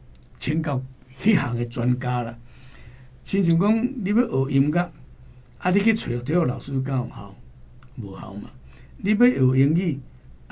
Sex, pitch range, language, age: male, 120-145 Hz, Chinese, 60-79